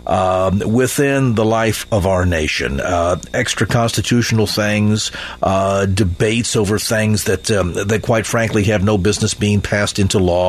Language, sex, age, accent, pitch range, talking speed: English, male, 50-69, American, 105-130 Hz, 155 wpm